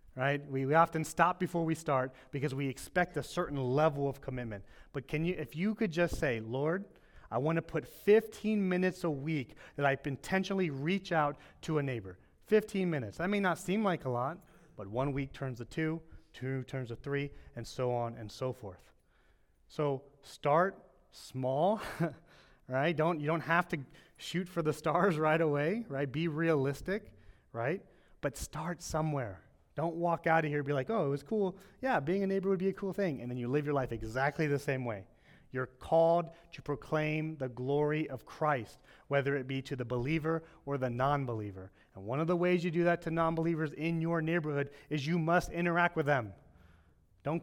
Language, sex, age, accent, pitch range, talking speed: English, male, 30-49, American, 130-170 Hz, 200 wpm